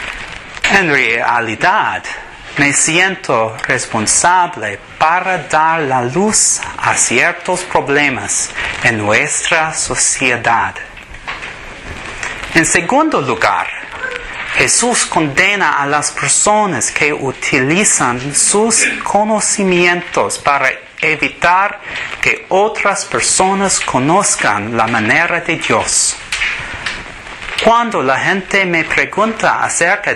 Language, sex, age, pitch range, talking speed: English, male, 30-49, 145-200 Hz, 85 wpm